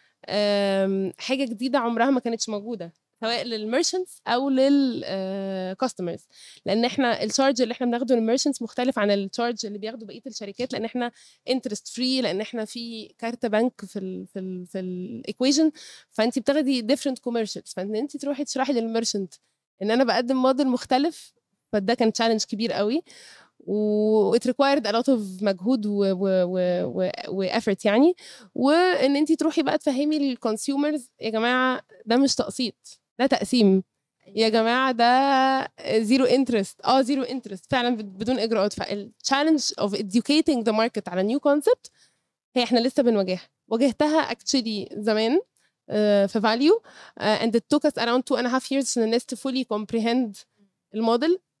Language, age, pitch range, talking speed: Arabic, 20-39, 210-265 Hz, 125 wpm